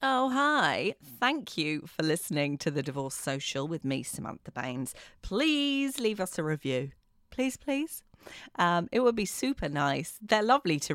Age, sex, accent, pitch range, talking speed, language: 30-49, female, British, 145-215 Hz, 165 wpm, English